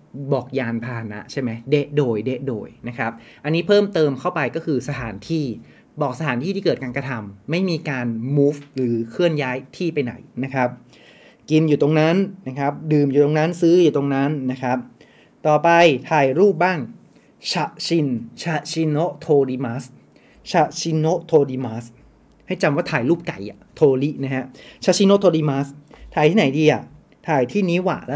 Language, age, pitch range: Japanese, 30-49, 130-160 Hz